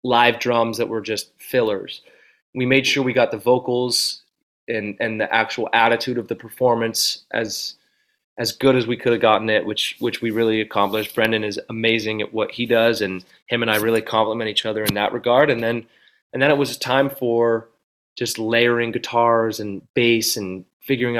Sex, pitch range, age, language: male, 110-125 Hz, 20-39, English